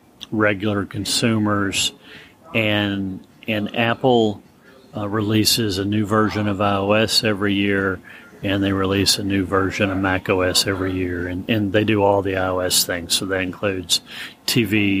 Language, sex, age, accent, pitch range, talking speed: English, male, 40-59, American, 95-105 Hz, 150 wpm